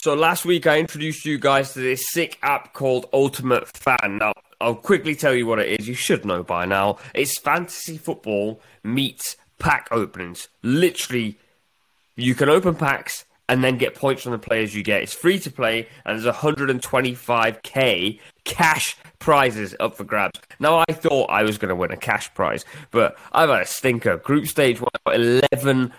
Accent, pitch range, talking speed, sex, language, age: British, 110-140 Hz, 180 wpm, male, English, 20-39